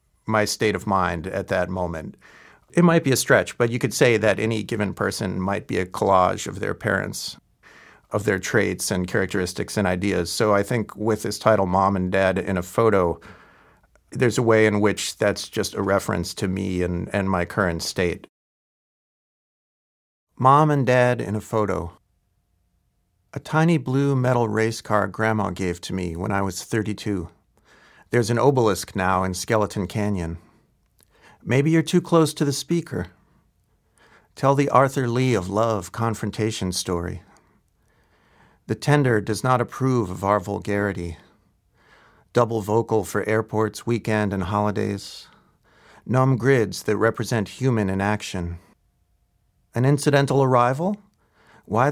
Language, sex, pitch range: English, male, 95-120 Hz